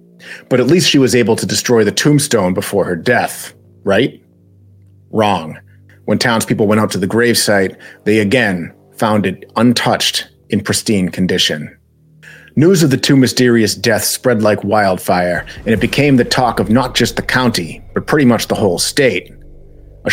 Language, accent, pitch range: English, American, 100-125 Hz